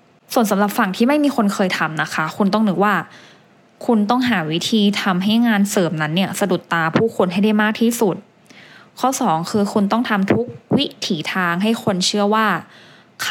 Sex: female